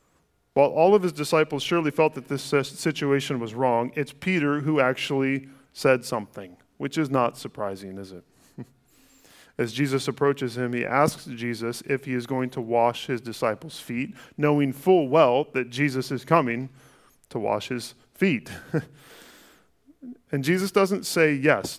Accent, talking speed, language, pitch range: American, 155 wpm, English, 120-145 Hz